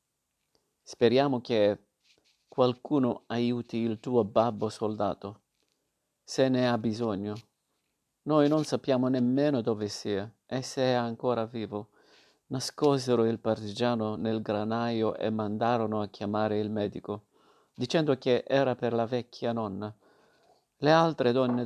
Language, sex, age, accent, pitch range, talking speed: Italian, male, 50-69, native, 110-125 Hz, 120 wpm